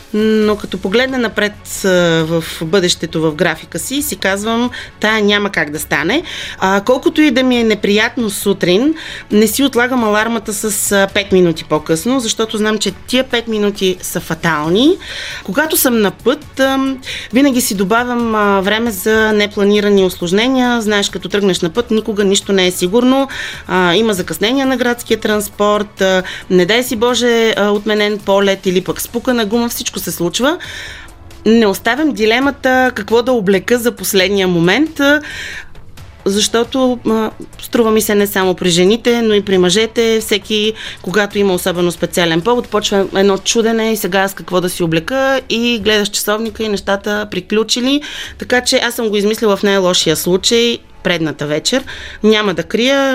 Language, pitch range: Bulgarian, 185-235 Hz